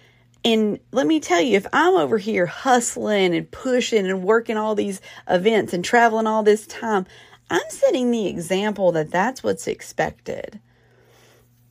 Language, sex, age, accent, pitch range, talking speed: English, female, 40-59, American, 160-255 Hz, 155 wpm